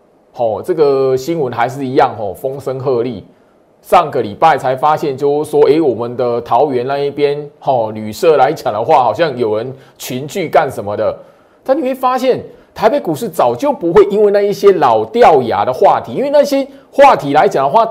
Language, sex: Chinese, male